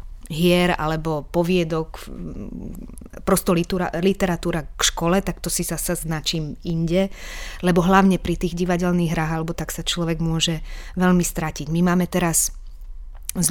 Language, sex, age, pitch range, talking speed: Slovak, female, 30-49, 160-180 Hz, 135 wpm